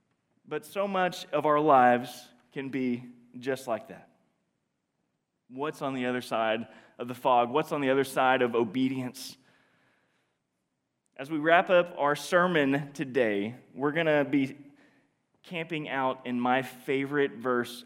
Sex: male